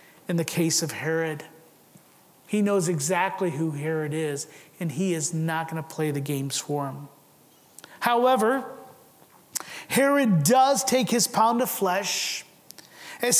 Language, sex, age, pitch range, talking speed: English, male, 30-49, 165-220 Hz, 140 wpm